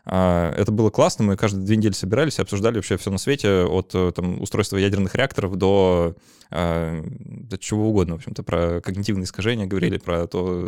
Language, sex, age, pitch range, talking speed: Russian, male, 20-39, 95-110 Hz, 170 wpm